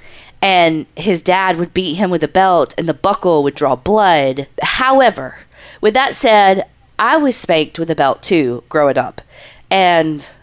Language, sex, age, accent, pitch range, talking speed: English, female, 20-39, American, 160-220 Hz, 165 wpm